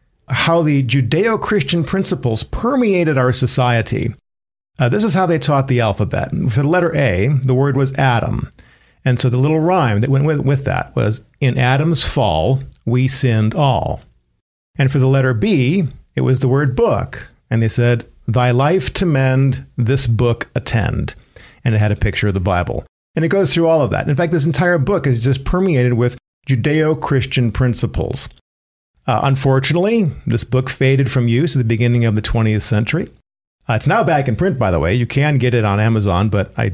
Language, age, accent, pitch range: English, 50-69, American, 115-150 Hz